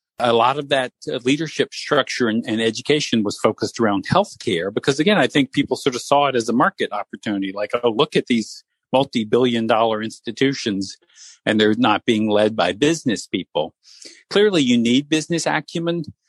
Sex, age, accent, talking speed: male, 50-69, American, 180 wpm